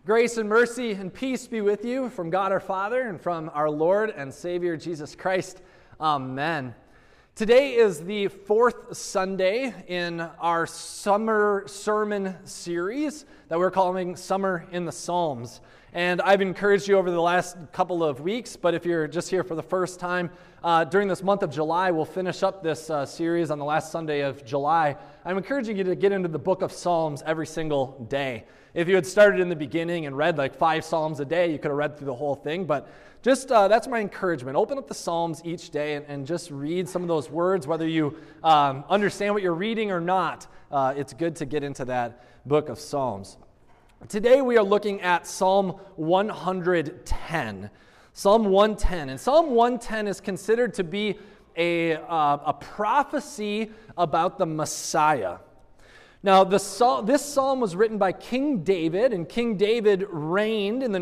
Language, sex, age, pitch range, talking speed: English, male, 20-39, 155-205 Hz, 180 wpm